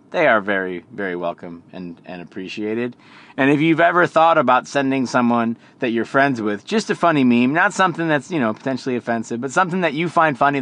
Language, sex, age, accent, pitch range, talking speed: English, male, 40-59, American, 120-195 Hz, 210 wpm